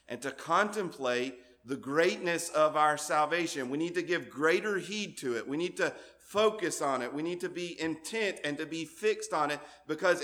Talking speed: 200 wpm